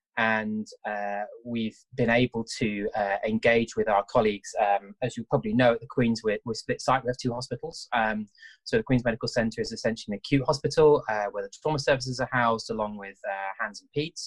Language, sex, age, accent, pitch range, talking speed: English, male, 20-39, British, 105-135 Hz, 215 wpm